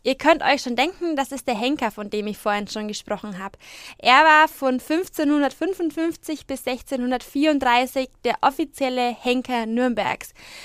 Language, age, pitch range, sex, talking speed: German, 20-39, 235-290 Hz, female, 145 wpm